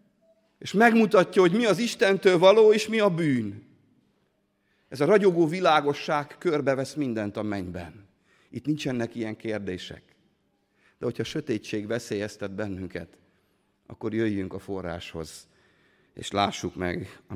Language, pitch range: Hungarian, 95-140 Hz